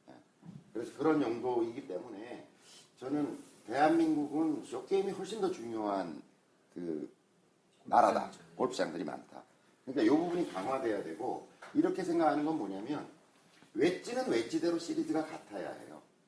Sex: male